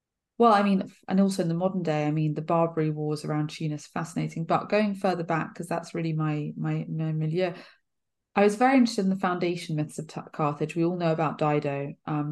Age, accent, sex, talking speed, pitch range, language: 20-39, British, female, 215 wpm, 150-175 Hz, English